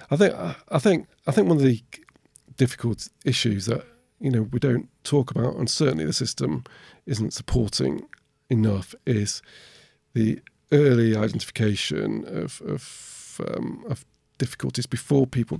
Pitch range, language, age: 110-135 Hz, English, 40-59